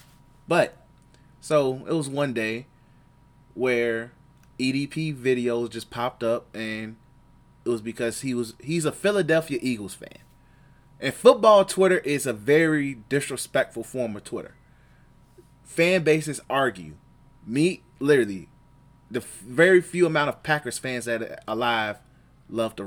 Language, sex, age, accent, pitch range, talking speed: English, male, 20-39, American, 115-140 Hz, 135 wpm